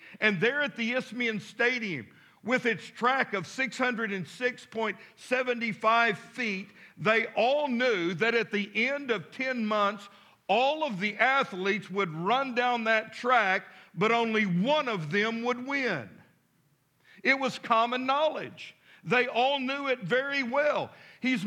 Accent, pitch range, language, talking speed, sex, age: American, 200-250 Hz, English, 135 wpm, male, 50-69